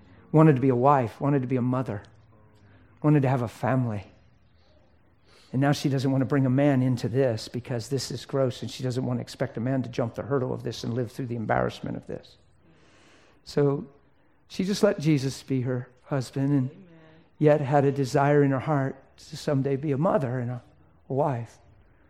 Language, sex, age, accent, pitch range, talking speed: English, male, 60-79, American, 120-145 Hz, 205 wpm